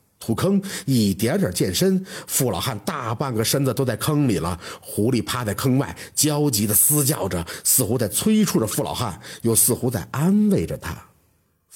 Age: 50-69